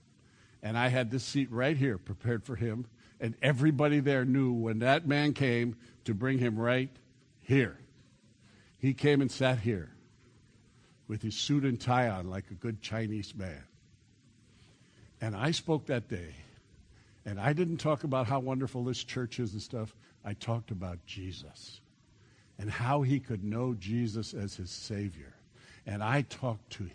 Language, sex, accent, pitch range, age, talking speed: English, male, American, 110-145 Hz, 60-79, 165 wpm